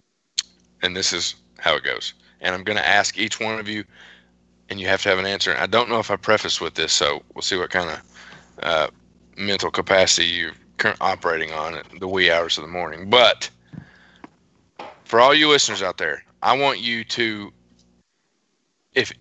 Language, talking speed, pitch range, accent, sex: English, 195 wpm, 85-120 Hz, American, male